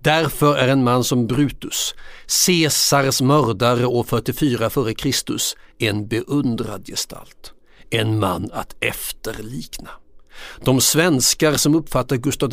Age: 60-79